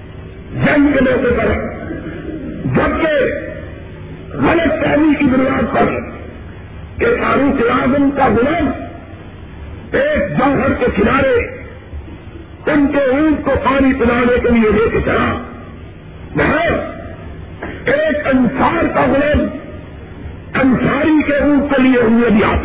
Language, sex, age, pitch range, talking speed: Urdu, female, 50-69, 250-295 Hz, 105 wpm